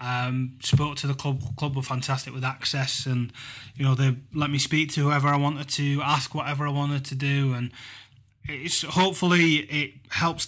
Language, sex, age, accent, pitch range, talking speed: English, male, 20-39, British, 130-145 Hz, 190 wpm